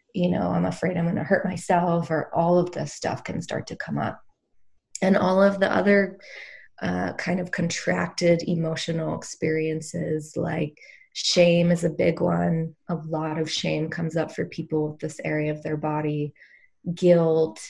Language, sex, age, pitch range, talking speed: English, female, 20-39, 155-175 Hz, 170 wpm